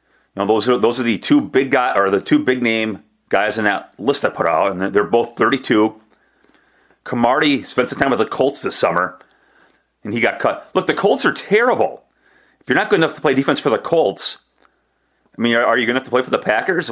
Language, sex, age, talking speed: English, male, 40-59, 235 wpm